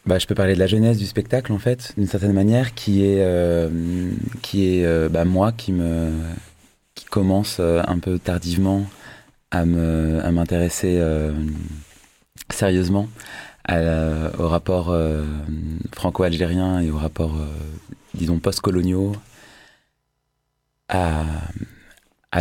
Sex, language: male, French